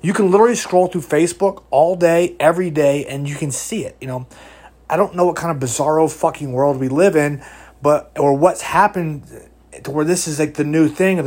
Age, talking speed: 30-49, 225 wpm